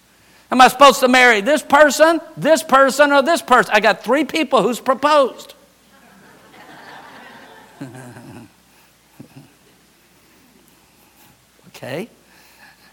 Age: 50-69